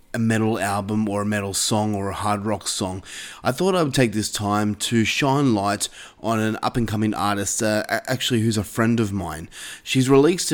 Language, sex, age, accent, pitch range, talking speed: English, male, 20-39, Australian, 100-120 Hz, 210 wpm